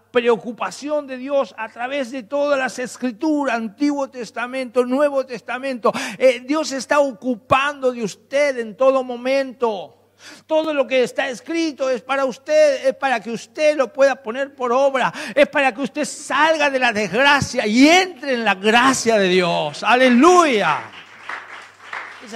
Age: 50-69